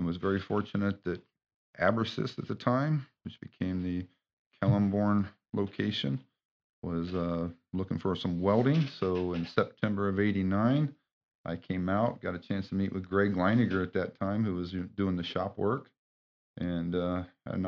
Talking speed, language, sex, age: 165 wpm, English, male, 40-59